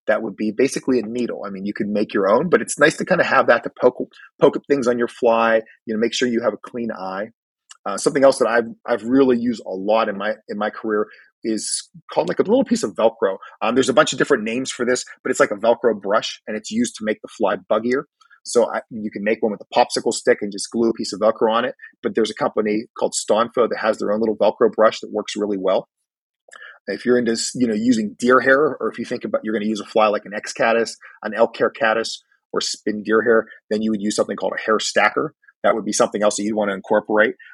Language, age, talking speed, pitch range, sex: English, 30-49, 270 wpm, 105-130 Hz, male